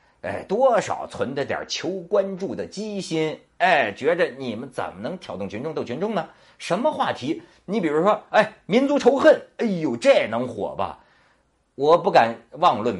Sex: male